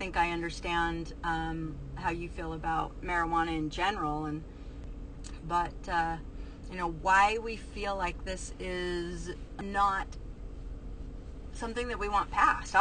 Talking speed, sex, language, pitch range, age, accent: 125 wpm, female, English, 160-185 Hz, 30-49, American